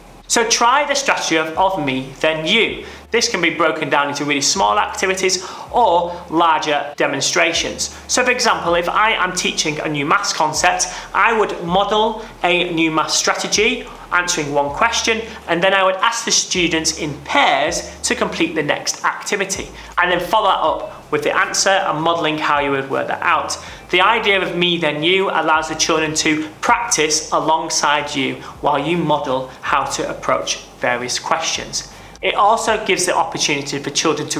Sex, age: male, 30-49